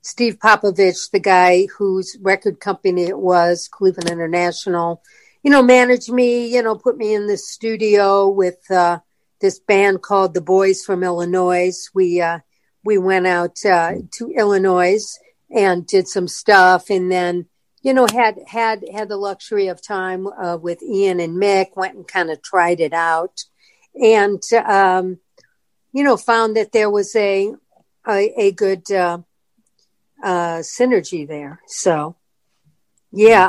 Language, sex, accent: English, female, American